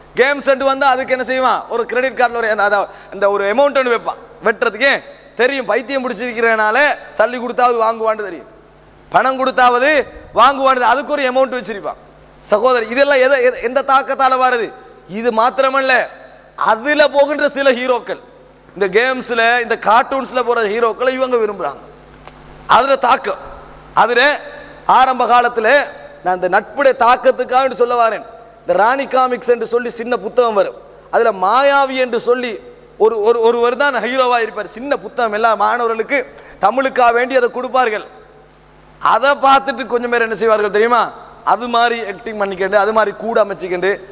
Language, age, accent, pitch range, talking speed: Tamil, 30-49, native, 225-260 Hz, 125 wpm